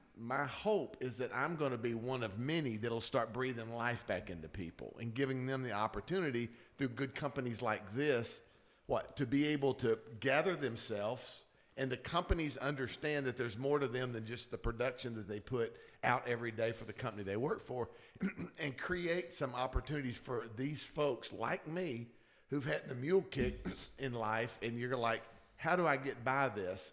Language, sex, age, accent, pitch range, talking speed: English, male, 50-69, American, 115-140 Hz, 190 wpm